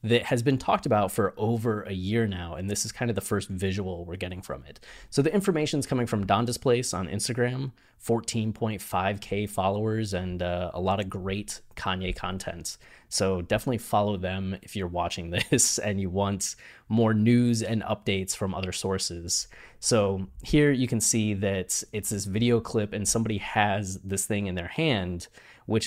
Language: English